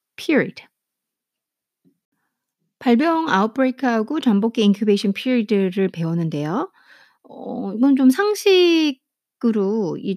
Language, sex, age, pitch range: Korean, female, 40-59, 185-275 Hz